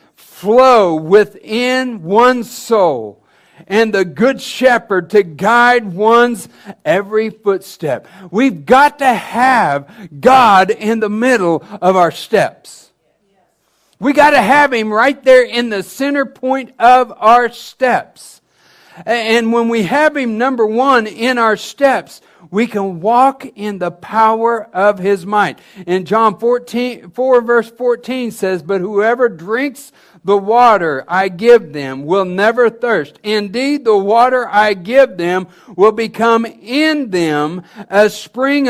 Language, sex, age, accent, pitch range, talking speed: English, male, 60-79, American, 195-250 Hz, 135 wpm